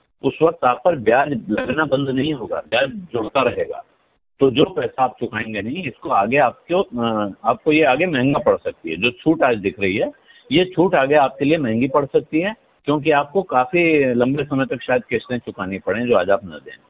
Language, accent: Hindi, native